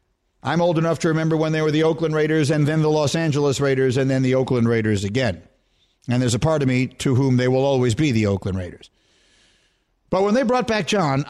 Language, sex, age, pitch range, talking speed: English, male, 50-69, 125-175 Hz, 235 wpm